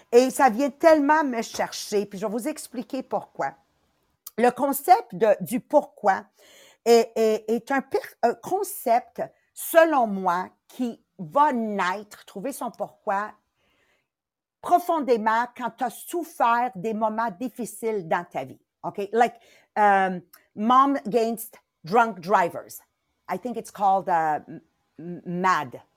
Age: 50-69